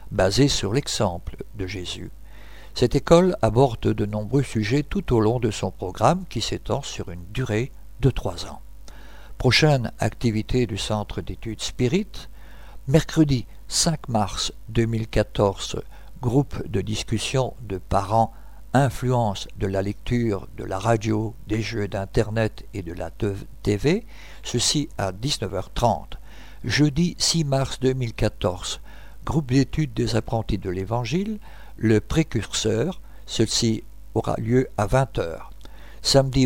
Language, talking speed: French, 125 wpm